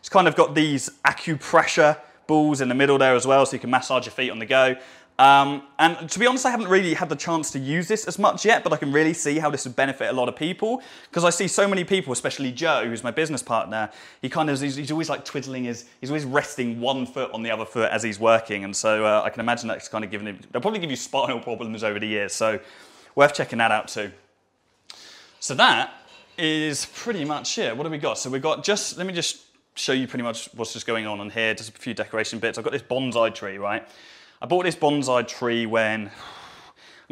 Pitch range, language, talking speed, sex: 115-150 Hz, English, 250 wpm, male